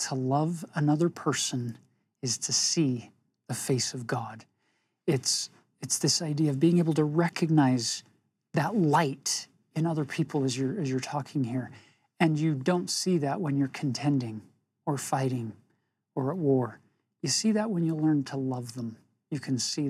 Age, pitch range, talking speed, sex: 40-59, 130-165 Hz, 170 wpm, male